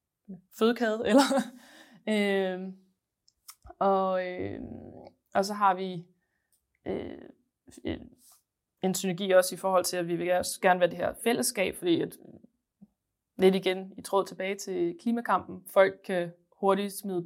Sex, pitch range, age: female, 180-200 Hz, 20-39